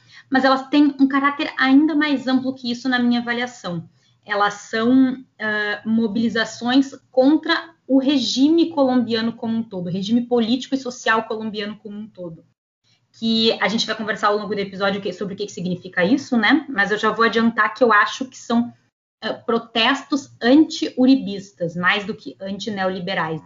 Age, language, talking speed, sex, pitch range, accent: 20-39, Portuguese, 165 wpm, female, 205-260 Hz, Brazilian